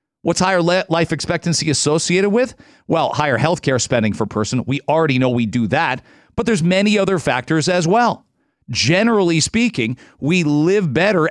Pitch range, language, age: 140-185 Hz, English, 40-59